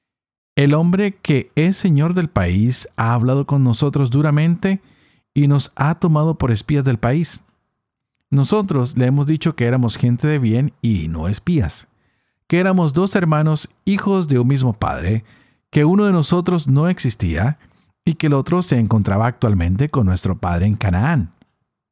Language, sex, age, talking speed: Spanish, male, 50-69, 160 wpm